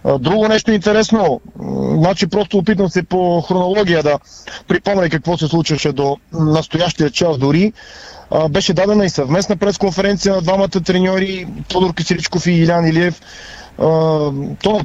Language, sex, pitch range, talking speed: Bulgarian, male, 160-210 Hz, 135 wpm